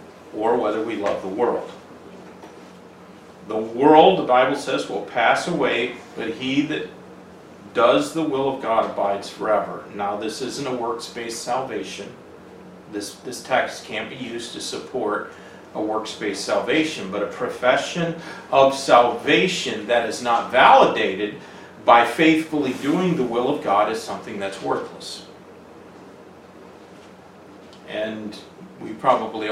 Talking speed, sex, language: 130 wpm, male, English